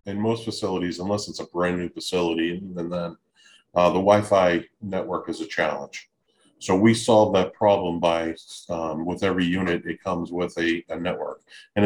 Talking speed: 175 wpm